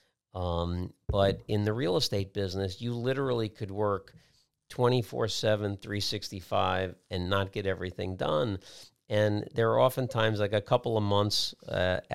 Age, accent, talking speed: 50-69, American, 165 wpm